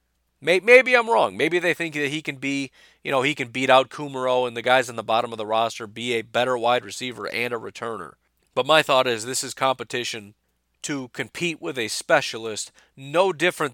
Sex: male